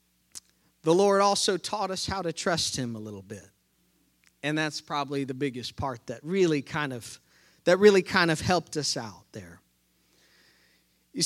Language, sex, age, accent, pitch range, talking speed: English, male, 40-59, American, 115-180 Hz, 165 wpm